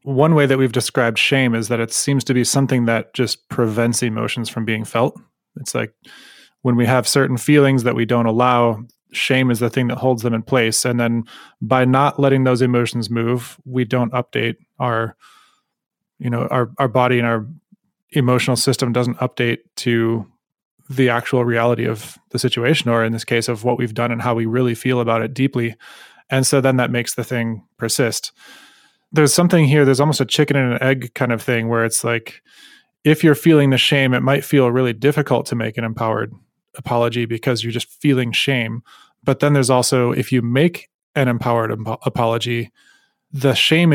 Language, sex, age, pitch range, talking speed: English, male, 20-39, 120-135 Hz, 195 wpm